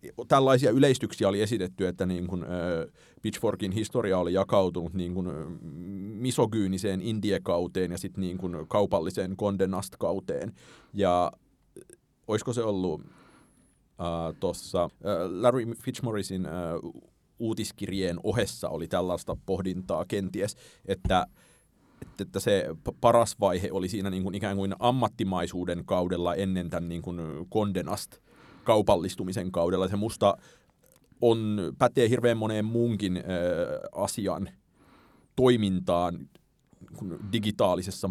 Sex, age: male, 30-49